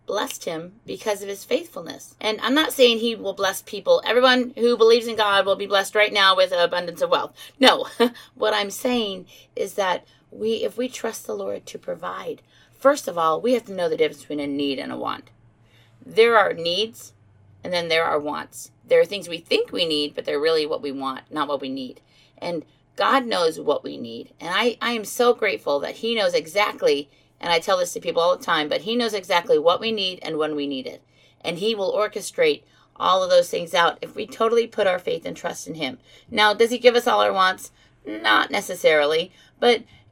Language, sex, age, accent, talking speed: English, female, 40-59, American, 225 wpm